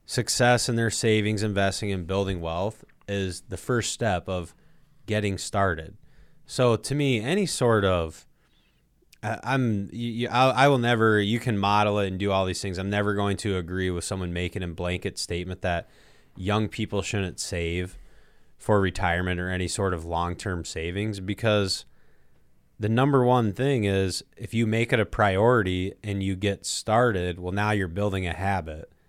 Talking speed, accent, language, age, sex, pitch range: 165 wpm, American, English, 20-39, male, 90-110 Hz